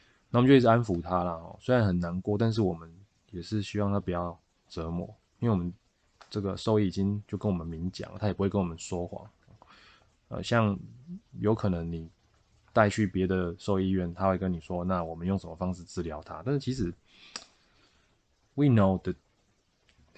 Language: Chinese